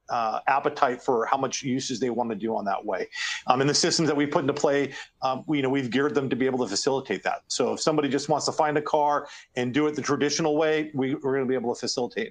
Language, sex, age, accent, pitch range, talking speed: English, male, 40-59, American, 130-150 Hz, 265 wpm